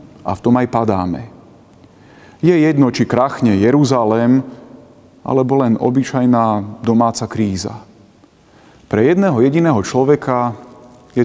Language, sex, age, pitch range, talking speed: Slovak, male, 40-59, 110-140 Hz, 105 wpm